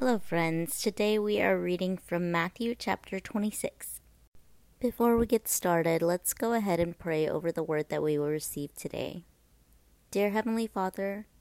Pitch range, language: 165-195 Hz, English